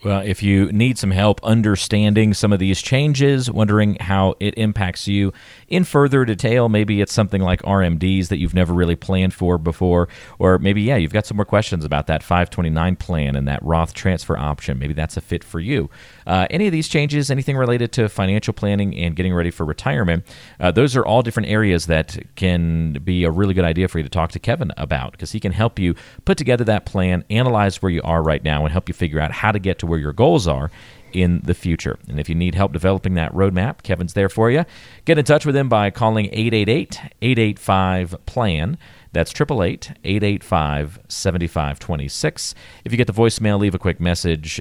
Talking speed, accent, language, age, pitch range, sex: 205 wpm, American, English, 40-59, 85-110 Hz, male